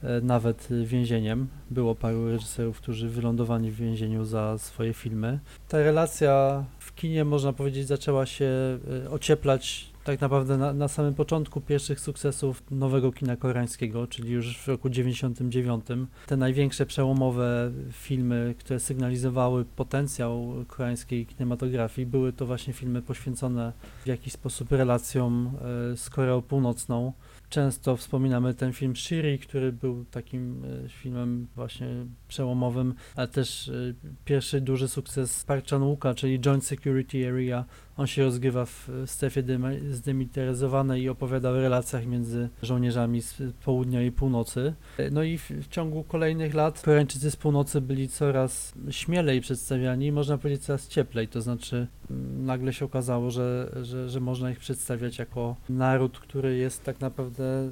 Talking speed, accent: 140 wpm, native